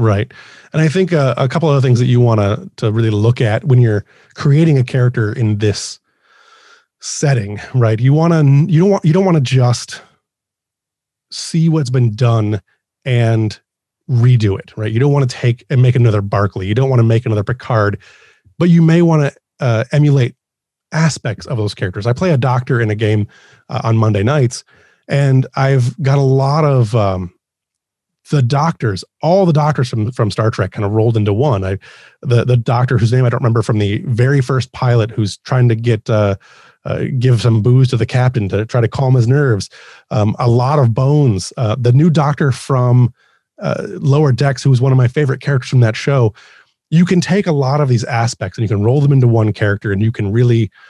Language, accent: English, American